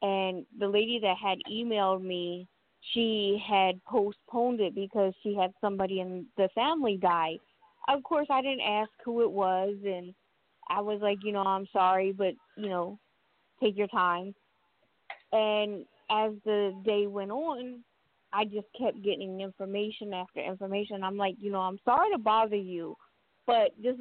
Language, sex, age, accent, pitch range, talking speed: English, female, 20-39, American, 190-225 Hz, 160 wpm